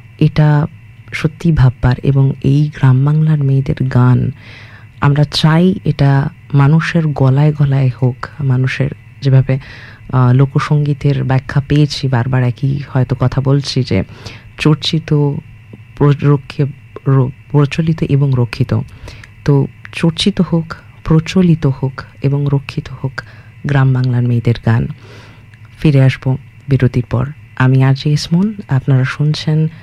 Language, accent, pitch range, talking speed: English, Indian, 125-150 Hz, 85 wpm